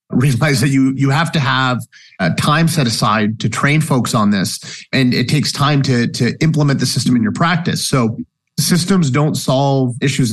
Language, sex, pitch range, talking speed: English, male, 120-150 Hz, 190 wpm